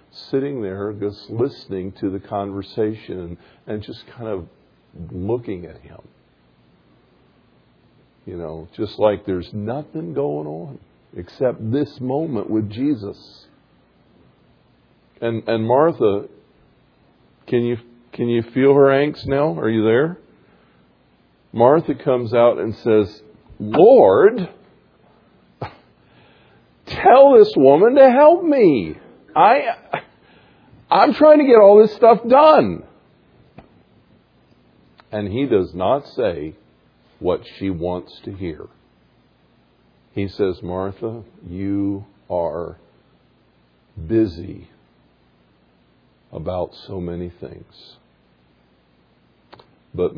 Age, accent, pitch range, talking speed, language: 50-69, American, 85-125 Hz, 100 wpm, English